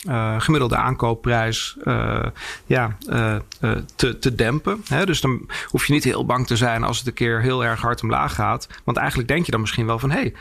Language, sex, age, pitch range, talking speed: English, male, 40-59, 115-145 Hz, 210 wpm